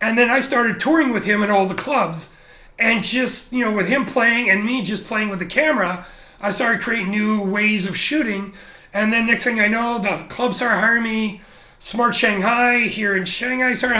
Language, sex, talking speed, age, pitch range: English, male, 210 wpm, 40-59, 200-240 Hz